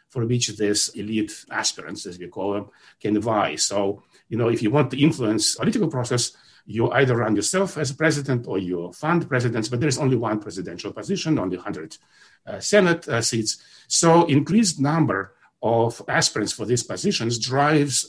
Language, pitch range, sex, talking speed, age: English, 110-145 Hz, male, 180 wpm, 60-79